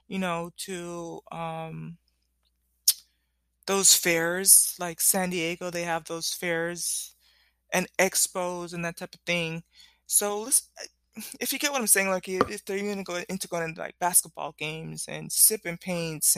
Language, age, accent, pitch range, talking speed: English, 20-39, American, 160-205 Hz, 160 wpm